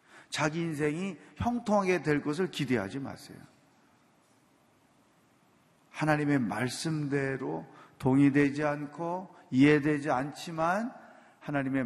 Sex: male